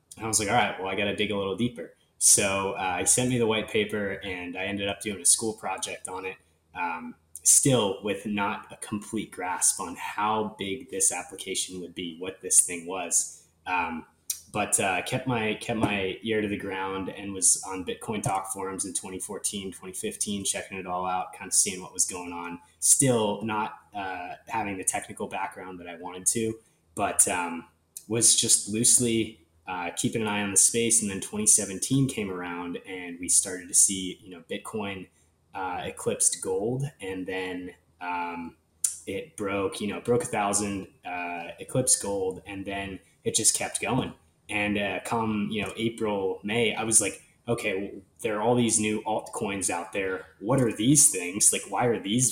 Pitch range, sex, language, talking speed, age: 95-110 Hz, male, English, 190 wpm, 20-39